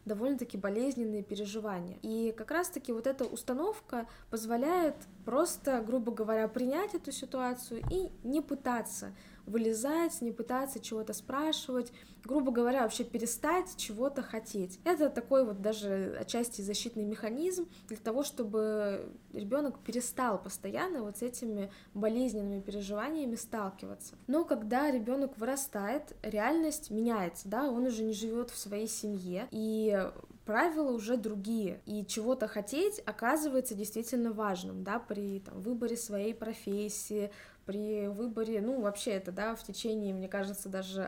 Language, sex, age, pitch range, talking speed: Russian, female, 20-39, 210-255 Hz, 135 wpm